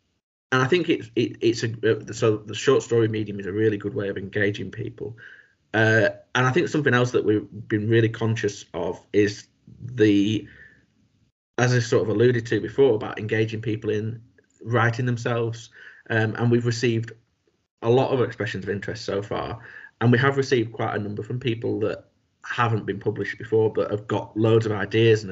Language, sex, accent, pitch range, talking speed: English, male, British, 105-115 Hz, 190 wpm